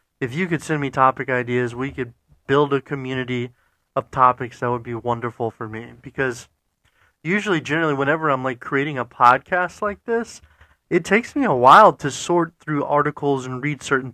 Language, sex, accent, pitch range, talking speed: English, male, American, 120-150 Hz, 180 wpm